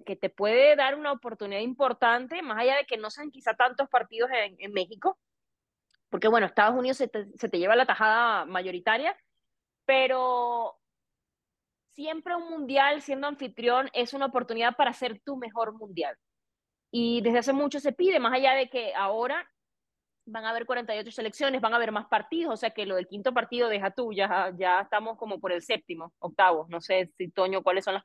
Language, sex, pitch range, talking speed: Spanish, female, 205-275 Hz, 195 wpm